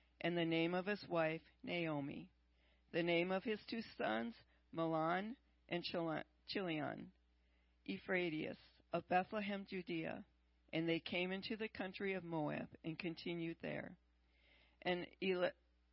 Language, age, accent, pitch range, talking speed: English, 50-69, American, 150-195 Hz, 120 wpm